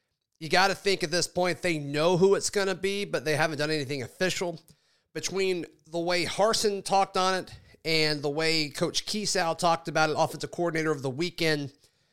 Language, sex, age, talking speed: English, male, 40-59, 200 wpm